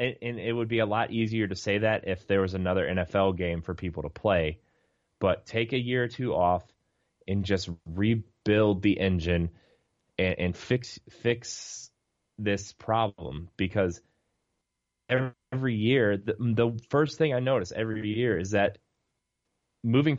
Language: English